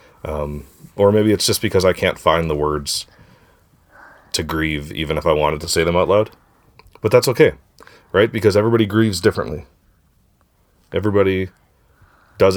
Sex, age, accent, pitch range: male, 30-49, American, 80-105 Hz